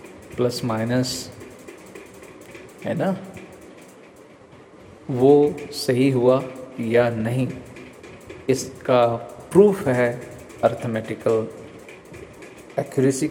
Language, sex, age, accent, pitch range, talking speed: Hindi, male, 50-69, native, 115-135 Hz, 65 wpm